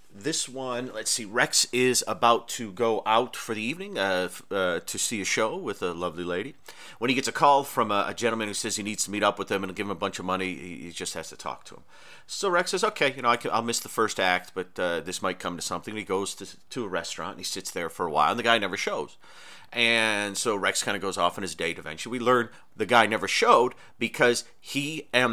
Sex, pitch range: male, 100-125 Hz